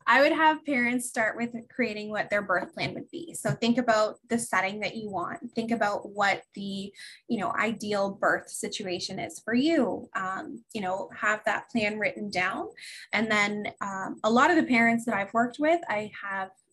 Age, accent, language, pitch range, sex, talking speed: 20-39, American, English, 200-245 Hz, female, 195 wpm